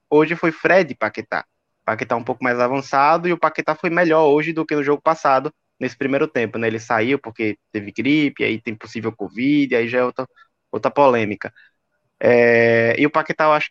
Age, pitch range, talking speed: 20-39, 135-185 Hz, 195 wpm